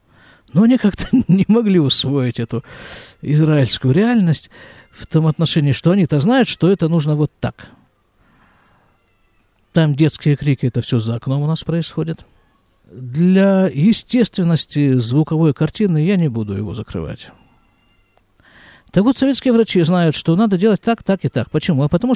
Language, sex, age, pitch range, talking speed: Russian, male, 50-69, 130-195 Hz, 145 wpm